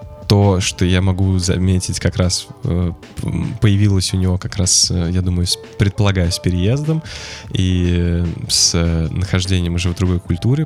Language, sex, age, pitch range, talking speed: Russian, male, 20-39, 90-105 Hz, 135 wpm